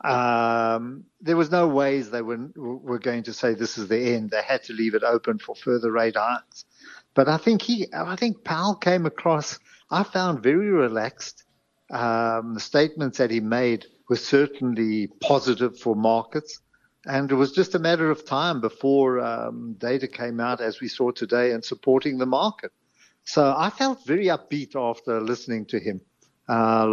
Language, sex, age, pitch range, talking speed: English, male, 50-69, 115-140 Hz, 175 wpm